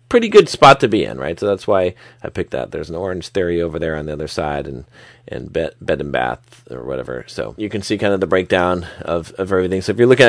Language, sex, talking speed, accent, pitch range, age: English, male, 270 wpm, American, 95-125 Hz, 30-49